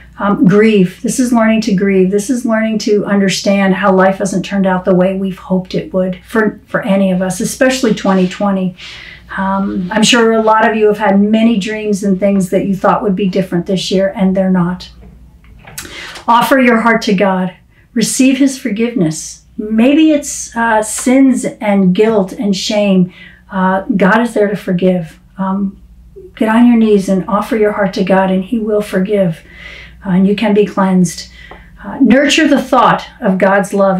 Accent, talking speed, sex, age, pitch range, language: American, 185 wpm, female, 50-69, 190-230 Hz, English